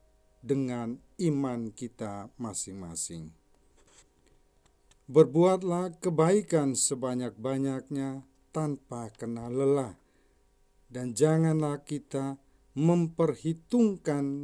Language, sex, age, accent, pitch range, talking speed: Indonesian, male, 50-69, native, 120-155 Hz, 60 wpm